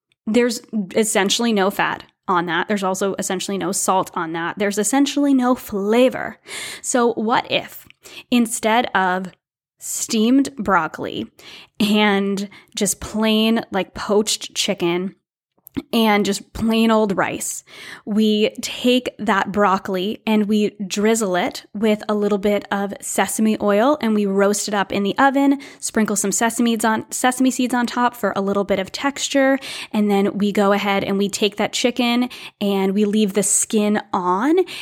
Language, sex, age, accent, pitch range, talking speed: English, female, 10-29, American, 195-225 Hz, 150 wpm